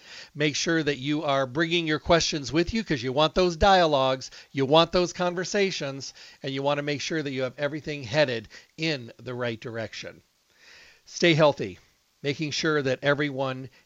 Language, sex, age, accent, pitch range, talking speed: English, male, 50-69, American, 135-160 Hz, 175 wpm